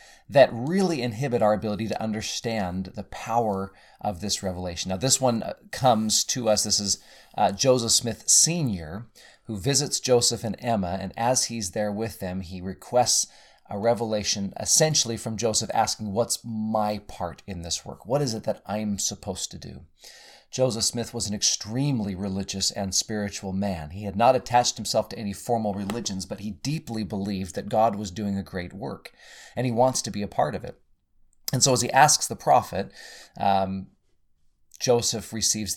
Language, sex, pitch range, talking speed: English, male, 95-120 Hz, 175 wpm